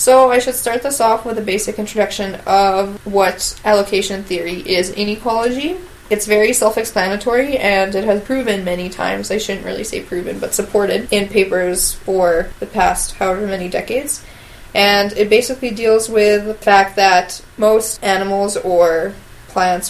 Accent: American